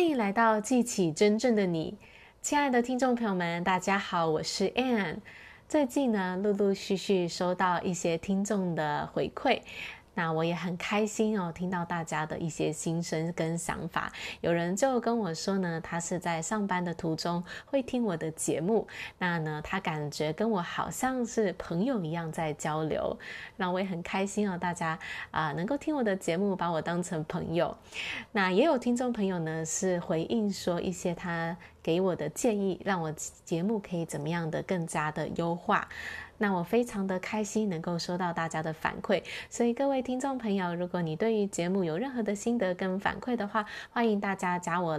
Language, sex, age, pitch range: Chinese, female, 20-39, 170-215 Hz